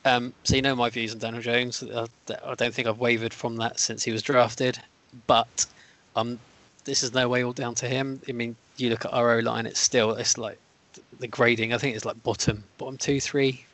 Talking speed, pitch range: 225 wpm, 115-130 Hz